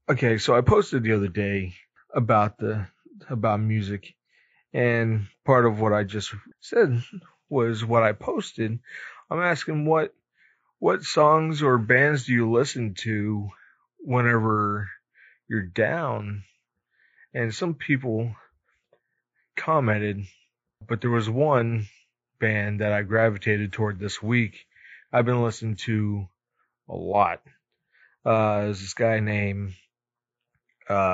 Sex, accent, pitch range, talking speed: male, American, 100-120 Hz, 120 wpm